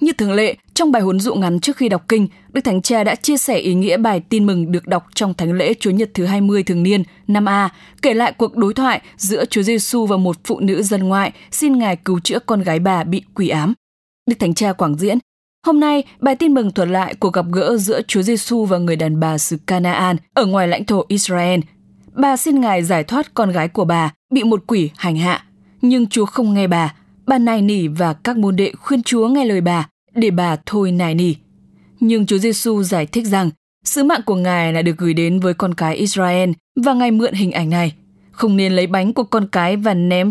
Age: 10-29